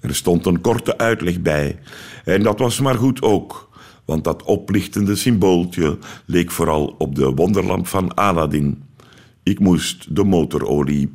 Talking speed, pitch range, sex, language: 145 wpm, 75-100 Hz, male, Dutch